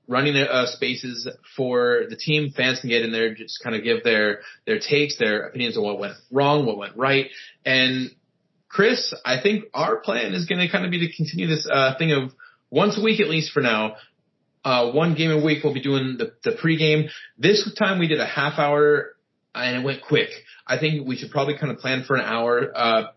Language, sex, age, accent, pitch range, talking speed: English, male, 30-49, American, 120-155 Hz, 225 wpm